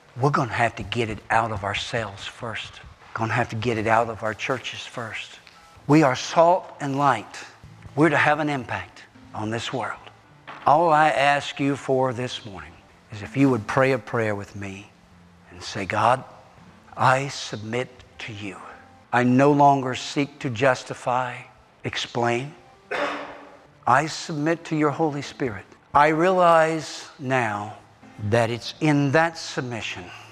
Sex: male